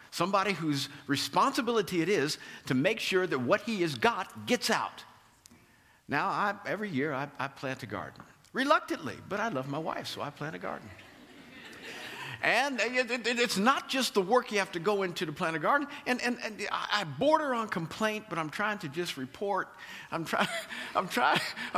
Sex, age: male, 50-69